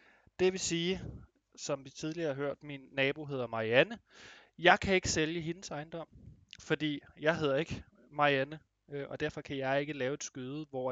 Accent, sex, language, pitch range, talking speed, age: native, male, Danish, 125-160 Hz, 175 wpm, 20-39